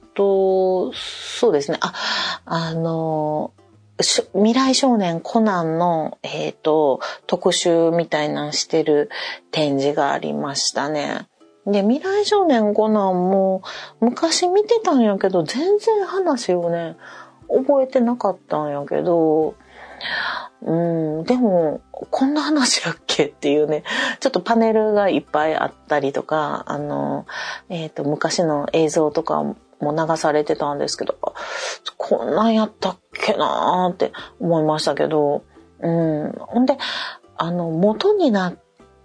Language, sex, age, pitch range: Japanese, female, 40-59, 155-220 Hz